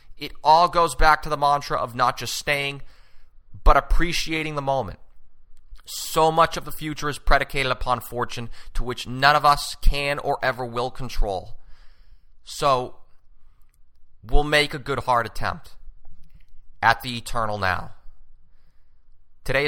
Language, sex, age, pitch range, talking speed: English, male, 30-49, 110-150 Hz, 140 wpm